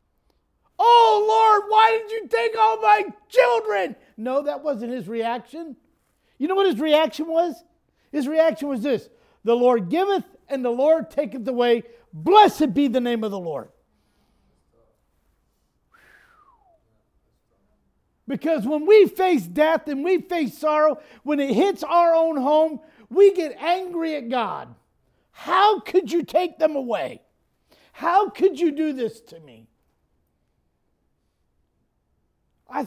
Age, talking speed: 50-69, 135 wpm